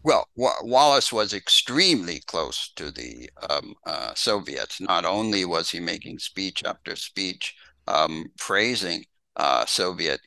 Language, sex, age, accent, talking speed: English, male, 60-79, American, 130 wpm